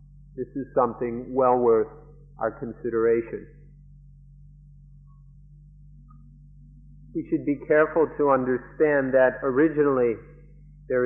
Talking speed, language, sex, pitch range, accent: 85 wpm, English, male, 130-150 Hz, American